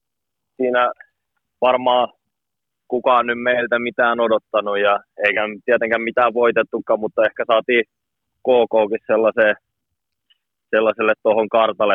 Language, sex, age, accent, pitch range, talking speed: Finnish, male, 20-39, native, 100-125 Hz, 95 wpm